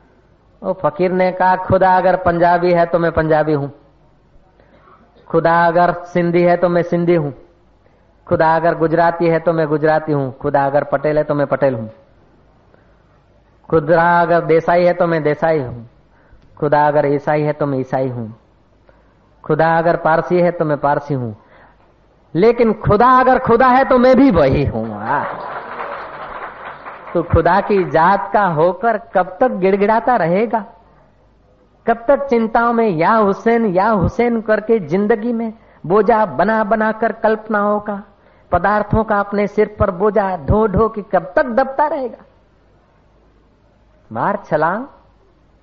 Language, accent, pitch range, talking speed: Hindi, native, 150-210 Hz, 145 wpm